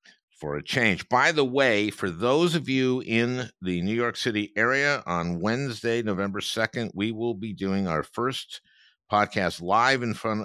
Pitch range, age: 85-115 Hz, 50-69